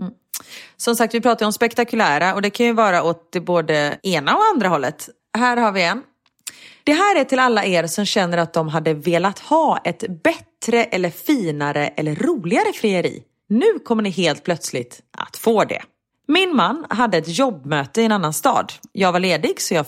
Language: Swedish